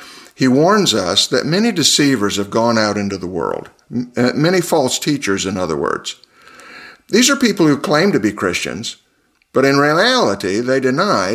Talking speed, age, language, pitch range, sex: 165 wpm, 50-69, English, 105-135 Hz, male